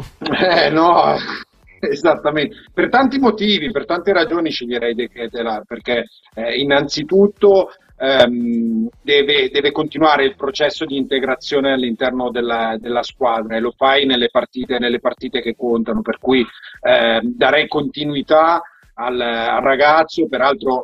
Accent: native